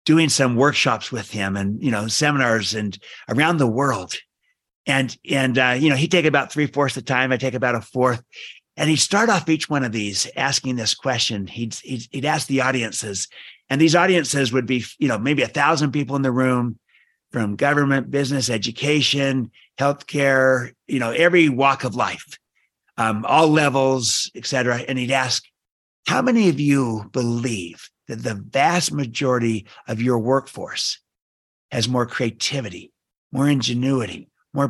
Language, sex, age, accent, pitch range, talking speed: English, male, 50-69, American, 120-145 Hz, 170 wpm